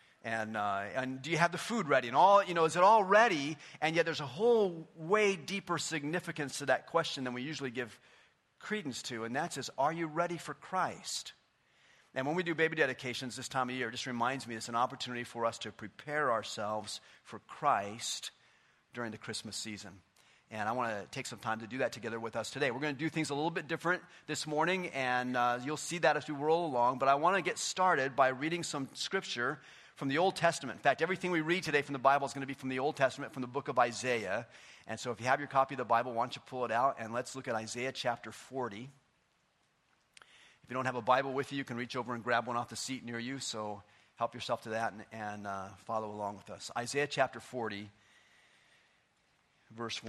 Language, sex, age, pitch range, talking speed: English, male, 40-59, 115-150 Hz, 240 wpm